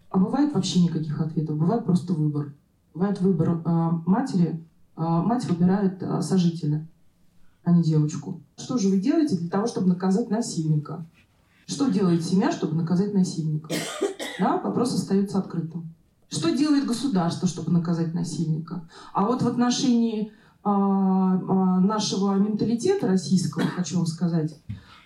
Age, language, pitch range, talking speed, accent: 30-49, Russian, 170-220 Hz, 125 wpm, native